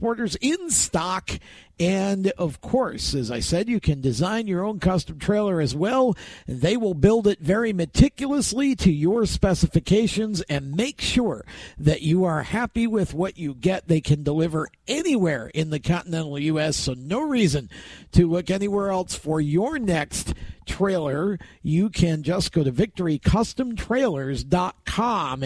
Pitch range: 155-215 Hz